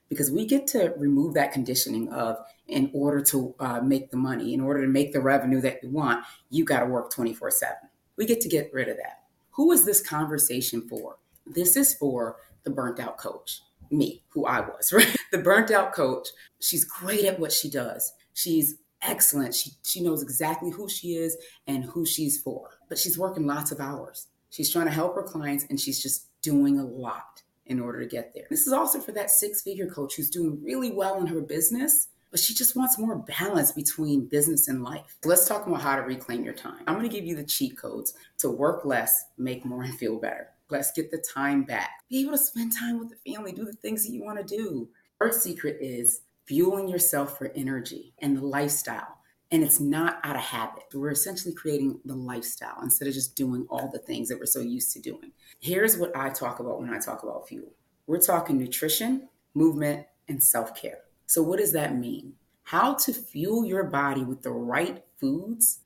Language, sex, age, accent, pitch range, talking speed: English, female, 30-49, American, 135-200 Hz, 210 wpm